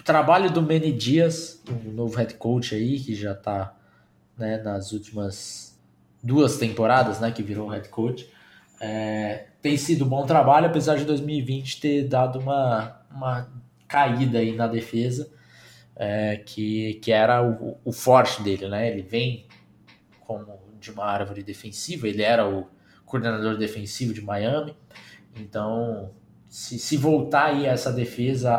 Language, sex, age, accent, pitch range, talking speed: Portuguese, male, 20-39, Brazilian, 110-140 Hz, 150 wpm